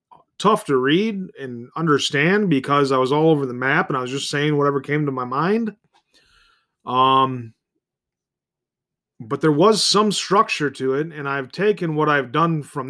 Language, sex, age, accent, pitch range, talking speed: English, male, 30-49, American, 135-175 Hz, 170 wpm